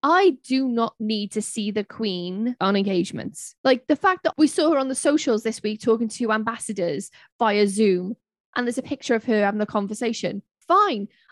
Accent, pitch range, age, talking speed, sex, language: British, 215-280 Hz, 10-29, 195 wpm, female, English